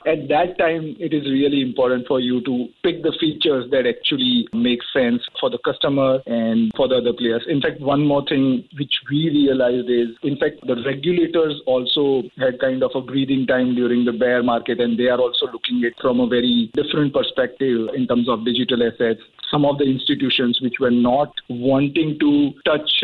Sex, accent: male, Indian